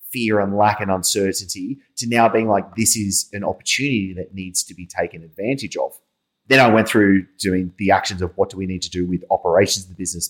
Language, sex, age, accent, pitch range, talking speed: English, male, 30-49, Australian, 90-105 Hz, 220 wpm